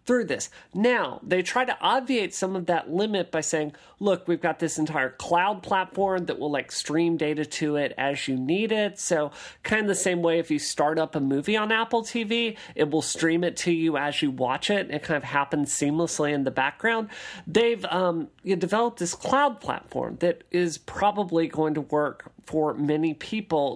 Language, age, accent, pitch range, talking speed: English, 40-59, American, 150-210 Hz, 200 wpm